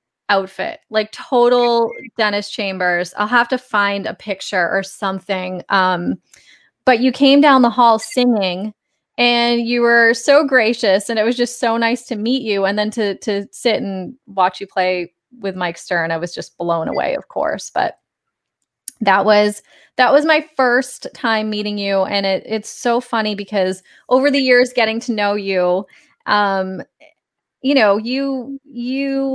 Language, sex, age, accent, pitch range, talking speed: English, female, 20-39, American, 195-255 Hz, 170 wpm